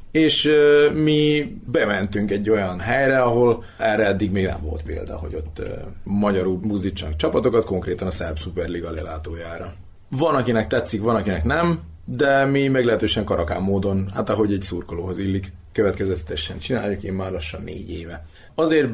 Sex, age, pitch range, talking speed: male, 30-49, 90-120 Hz, 155 wpm